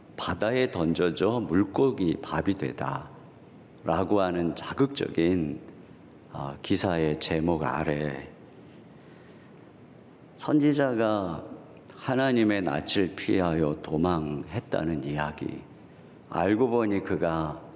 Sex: male